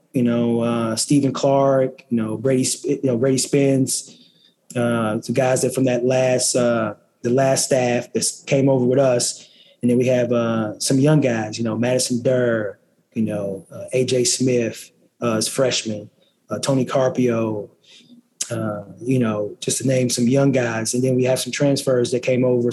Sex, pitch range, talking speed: male, 120-135 Hz, 180 wpm